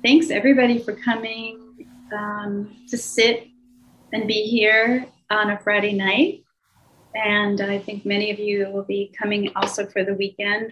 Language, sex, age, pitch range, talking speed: English, female, 30-49, 190-225 Hz, 150 wpm